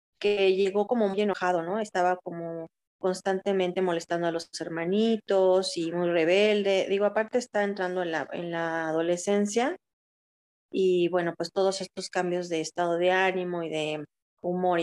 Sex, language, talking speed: female, Spanish, 155 wpm